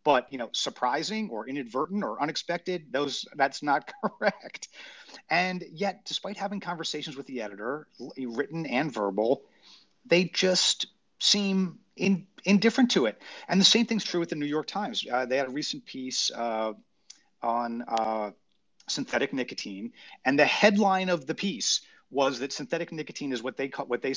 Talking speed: 165 wpm